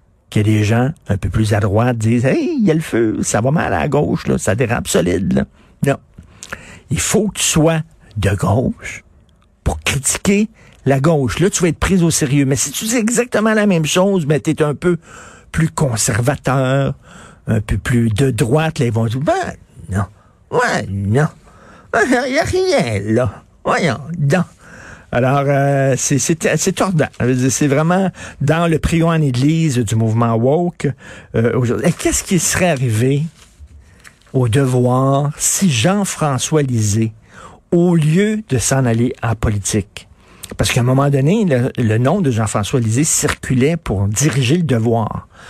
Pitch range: 110-160 Hz